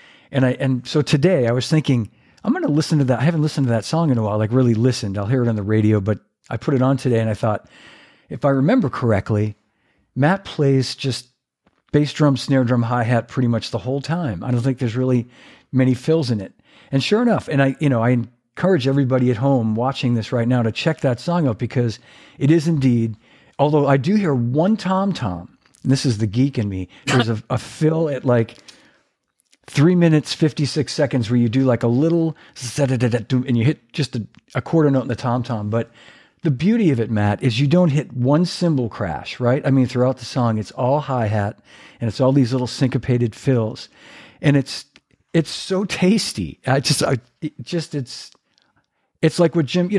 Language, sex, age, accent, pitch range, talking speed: English, male, 50-69, American, 120-150 Hz, 220 wpm